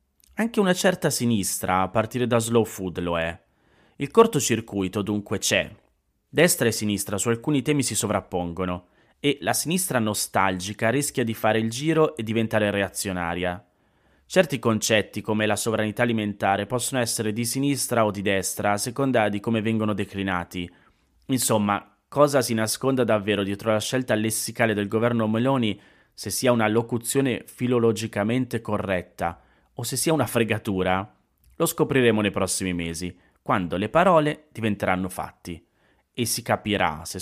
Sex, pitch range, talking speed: male, 95-120 Hz, 145 wpm